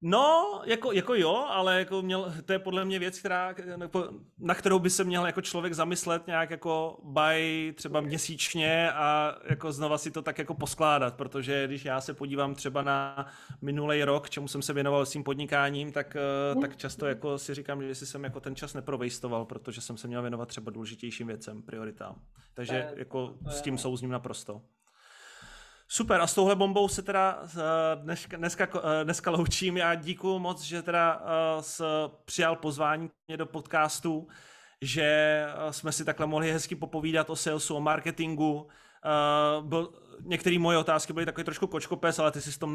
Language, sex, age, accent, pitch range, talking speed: Czech, male, 30-49, native, 140-170 Hz, 170 wpm